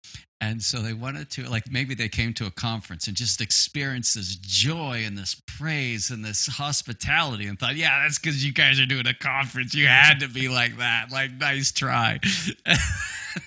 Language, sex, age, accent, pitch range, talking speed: English, male, 50-69, American, 105-135 Hz, 195 wpm